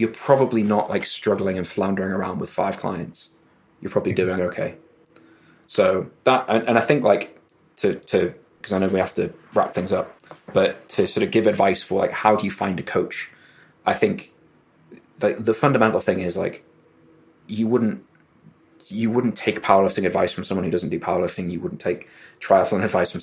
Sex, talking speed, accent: male, 190 wpm, British